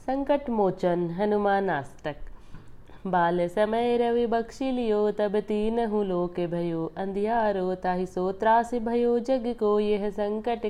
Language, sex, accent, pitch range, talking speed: Marathi, female, native, 185-235 Hz, 95 wpm